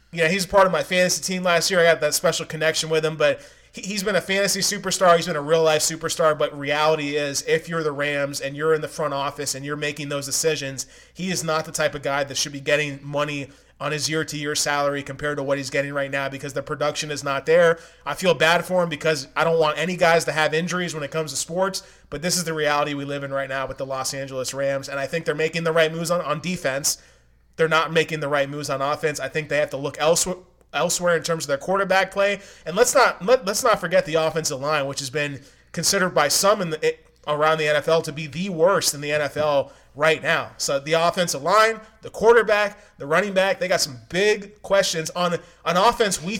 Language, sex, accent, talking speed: English, male, American, 245 wpm